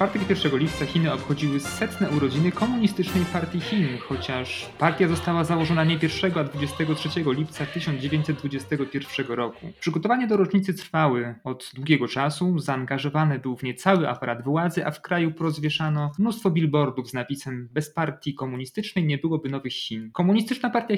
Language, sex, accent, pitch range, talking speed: Polish, male, native, 125-170 Hz, 150 wpm